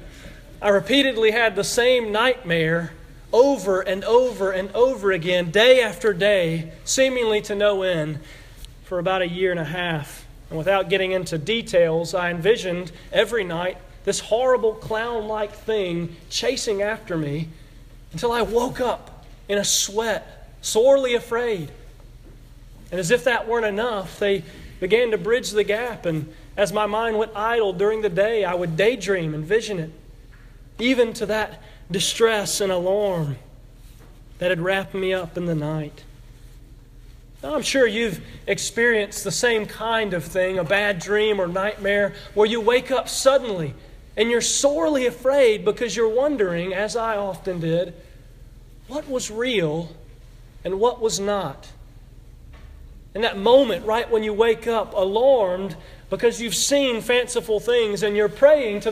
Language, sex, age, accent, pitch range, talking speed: English, male, 40-59, American, 170-230 Hz, 150 wpm